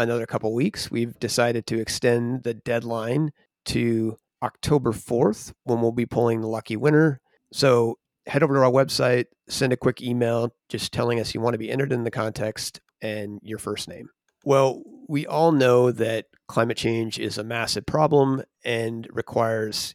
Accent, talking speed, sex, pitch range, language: American, 170 wpm, male, 110-125 Hz, English